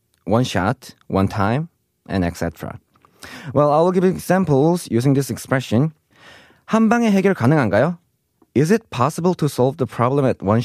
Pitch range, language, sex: 115-165 Hz, Korean, male